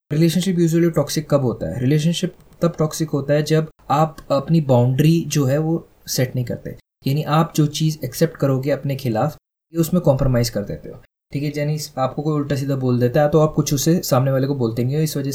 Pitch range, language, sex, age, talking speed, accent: 140-165 Hz, Hindi, male, 20-39, 225 wpm, native